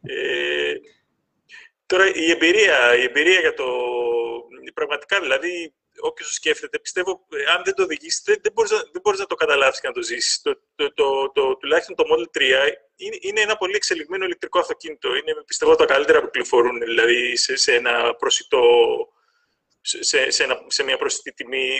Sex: male